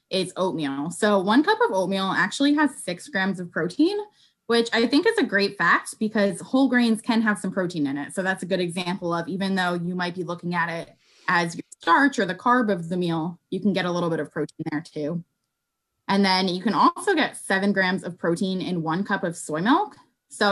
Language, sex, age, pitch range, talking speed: English, female, 20-39, 180-235 Hz, 230 wpm